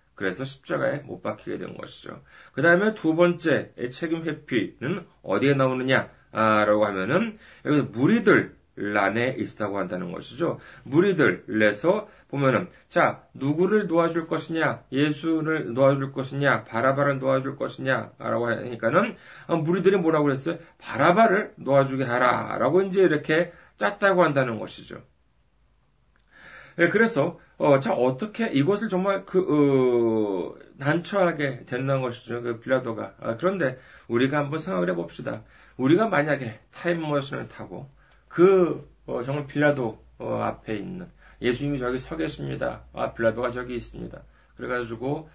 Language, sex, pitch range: Korean, male, 125-170 Hz